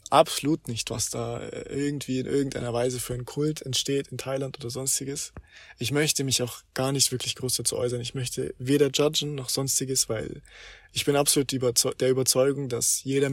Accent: German